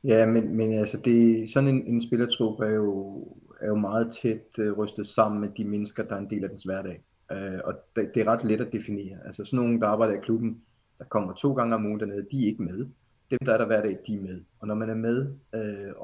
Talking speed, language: 260 wpm, Danish